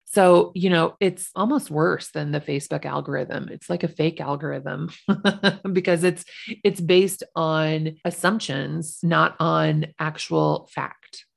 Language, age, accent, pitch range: English, 30-49, American, 160-205 Hz